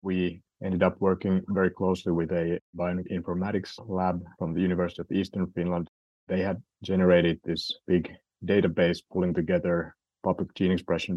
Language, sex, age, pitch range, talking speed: English, male, 30-49, 80-90 Hz, 145 wpm